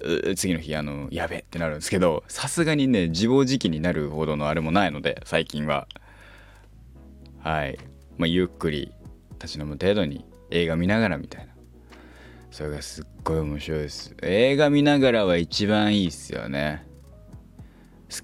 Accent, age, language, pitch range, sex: native, 20-39, Japanese, 75-105 Hz, male